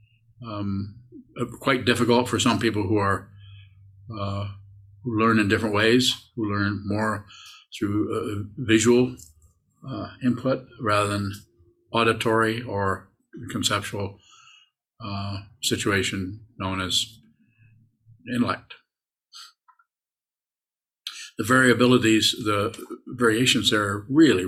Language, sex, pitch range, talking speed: English, male, 100-115 Hz, 95 wpm